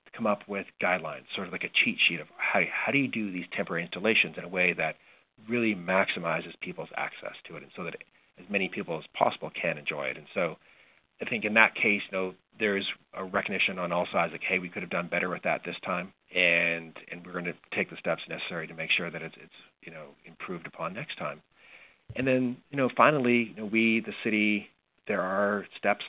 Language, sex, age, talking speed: English, male, 40-59, 230 wpm